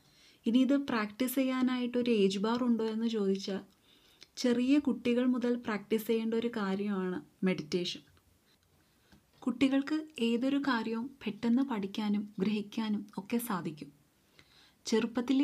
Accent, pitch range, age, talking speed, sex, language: native, 200-240 Hz, 30-49, 100 wpm, female, Malayalam